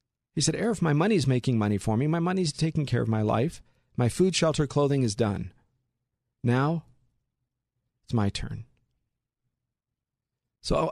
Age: 40-59